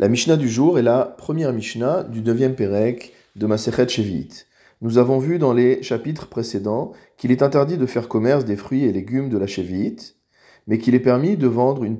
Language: French